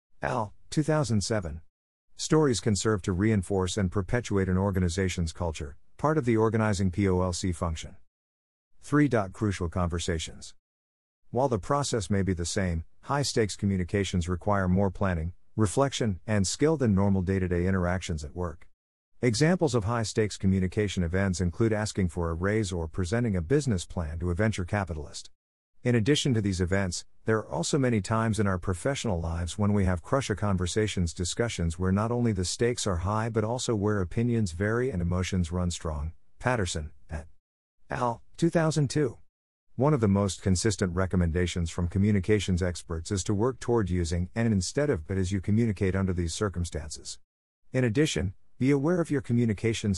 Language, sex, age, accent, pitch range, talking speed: English, male, 50-69, American, 90-115 Hz, 155 wpm